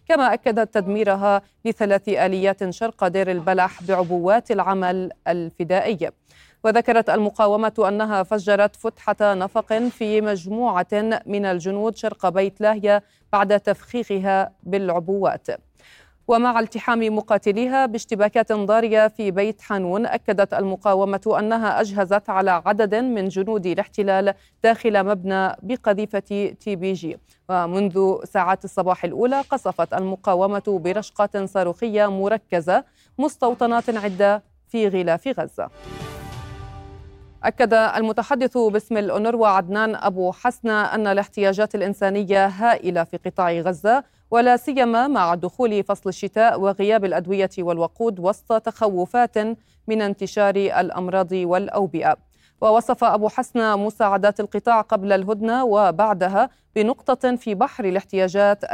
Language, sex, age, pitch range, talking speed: Arabic, female, 30-49, 190-220 Hz, 105 wpm